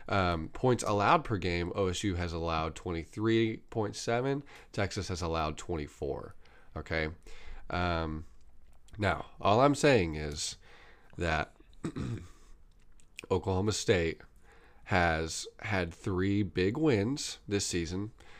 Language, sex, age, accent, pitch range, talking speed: English, male, 30-49, American, 85-115 Hz, 100 wpm